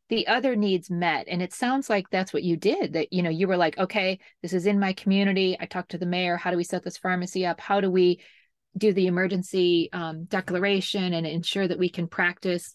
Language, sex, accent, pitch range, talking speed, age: English, female, American, 175-210 Hz, 235 wpm, 30-49